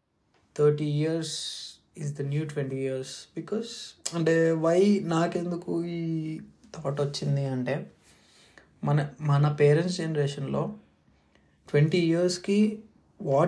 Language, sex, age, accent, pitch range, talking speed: Telugu, male, 20-39, native, 135-165 Hz, 120 wpm